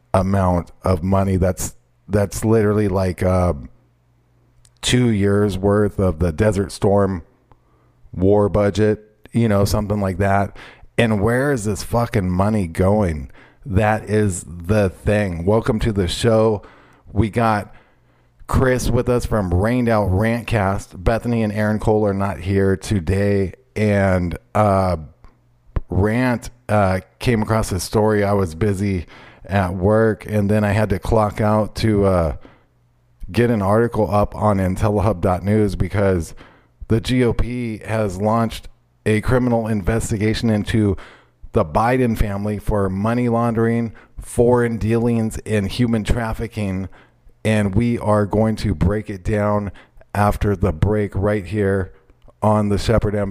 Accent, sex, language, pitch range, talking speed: American, male, English, 95-110 Hz, 135 wpm